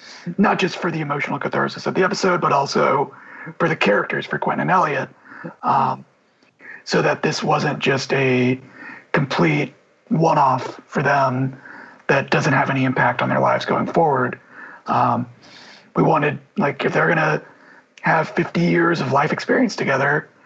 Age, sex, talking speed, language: 40-59, male, 160 wpm, English